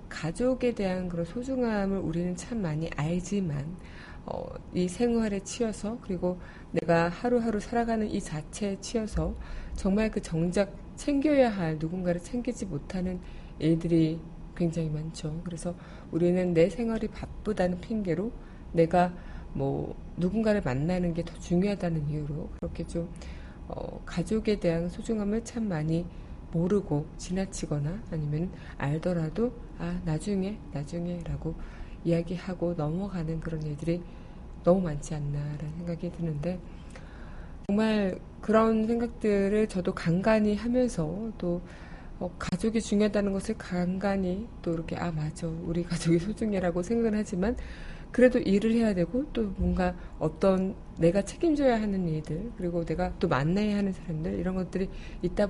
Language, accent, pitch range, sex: Korean, native, 165-210 Hz, female